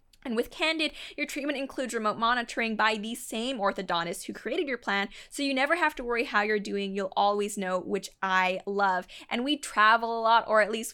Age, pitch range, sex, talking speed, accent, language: 10-29, 200-240 Hz, female, 215 wpm, American, English